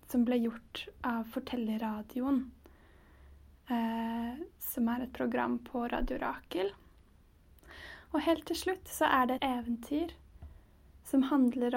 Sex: female